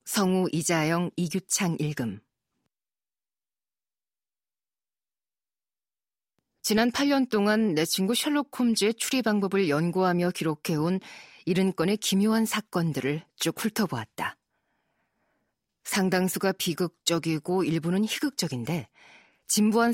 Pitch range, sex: 165-215 Hz, female